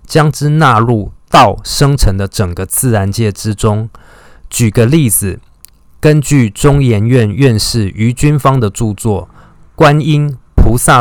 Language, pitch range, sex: Chinese, 105-135 Hz, male